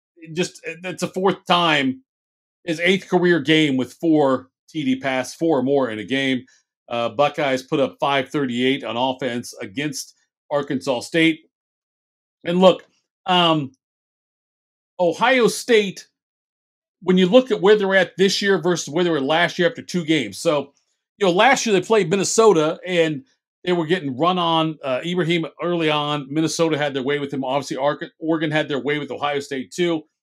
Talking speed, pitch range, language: 175 wpm, 140-180 Hz, English